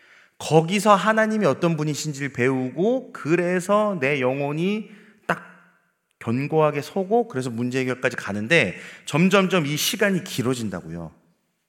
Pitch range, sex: 115-175 Hz, male